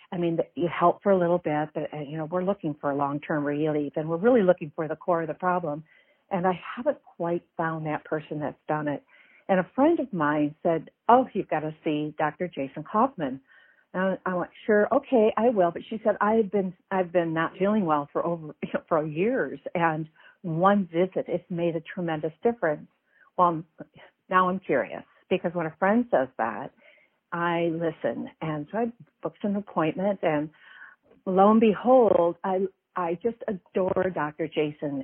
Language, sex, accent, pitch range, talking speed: English, female, American, 160-205 Hz, 190 wpm